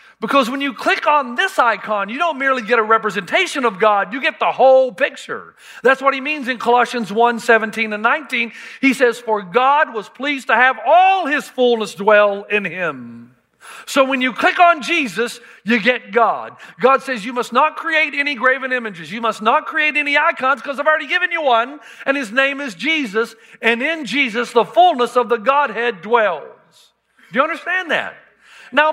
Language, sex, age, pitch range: English, male, 50-69, 225-295 Hz